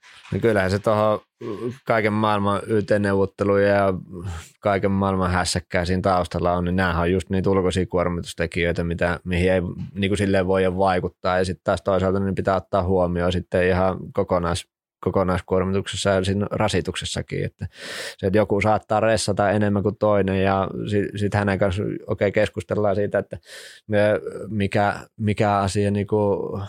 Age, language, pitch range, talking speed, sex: 20-39, Finnish, 95-105 Hz, 150 wpm, male